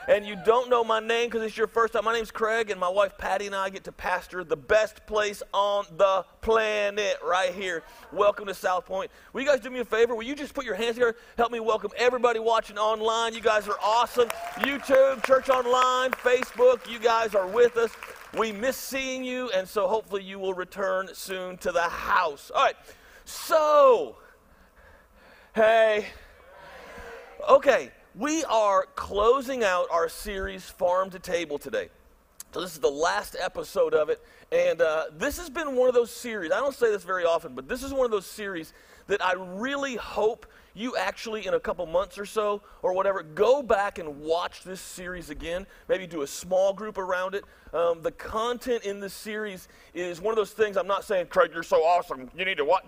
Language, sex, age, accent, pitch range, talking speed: English, male, 50-69, American, 195-255 Hz, 200 wpm